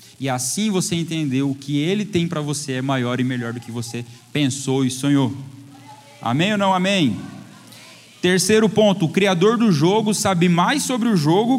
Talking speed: 180 wpm